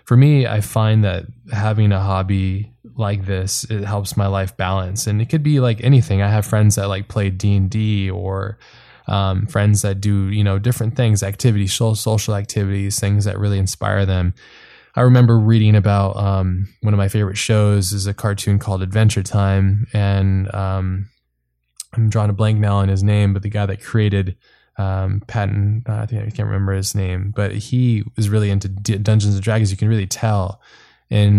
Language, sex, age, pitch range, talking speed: English, male, 10-29, 95-105 Hz, 195 wpm